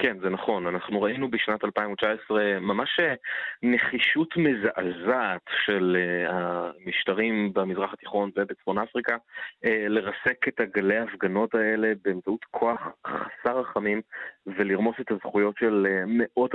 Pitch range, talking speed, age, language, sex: 95-110 Hz, 110 wpm, 30-49, Hebrew, male